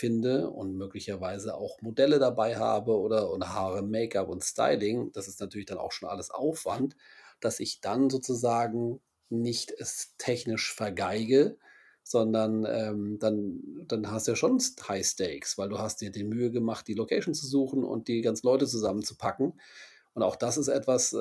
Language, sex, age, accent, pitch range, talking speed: German, male, 40-59, German, 105-125 Hz, 165 wpm